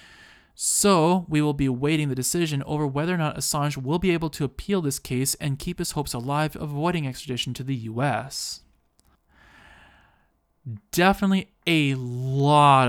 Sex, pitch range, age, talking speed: male, 120-160 Hz, 20-39, 155 wpm